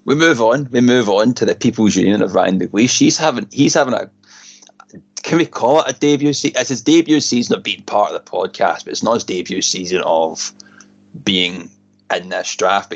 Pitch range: 95-115 Hz